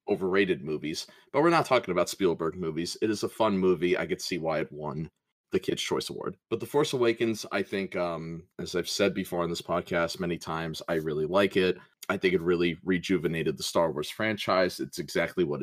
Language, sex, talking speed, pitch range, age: English, male, 215 wpm, 85-100 Hz, 30-49